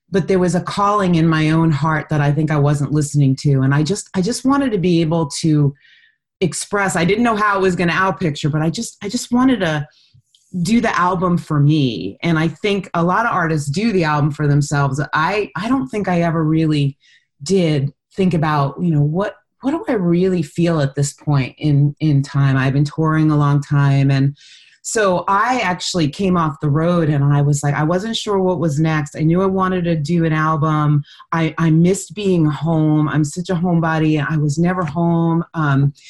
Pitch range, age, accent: 150-190 Hz, 30-49, American